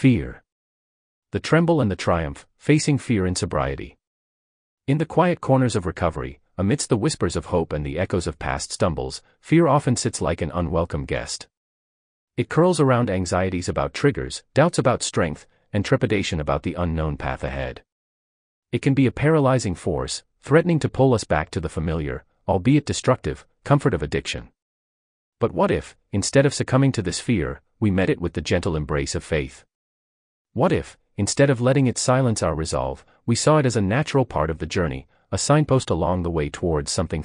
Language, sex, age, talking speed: English, male, 40-59, 180 wpm